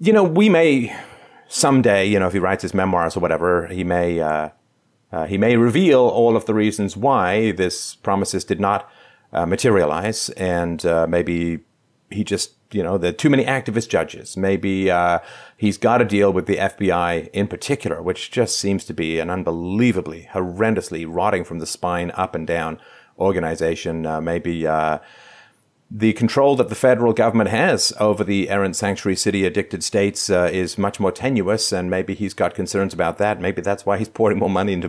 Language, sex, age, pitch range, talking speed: English, male, 40-59, 85-110 Hz, 185 wpm